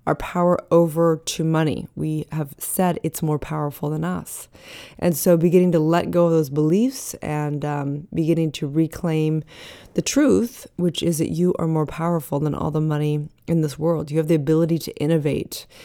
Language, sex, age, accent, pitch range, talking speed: English, female, 20-39, American, 155-175 Hz, 185 wpm